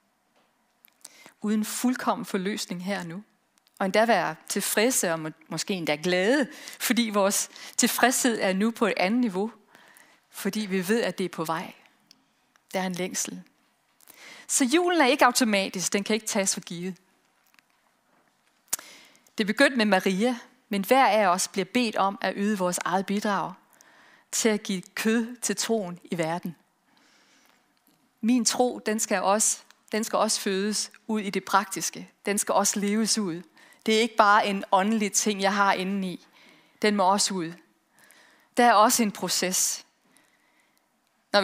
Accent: native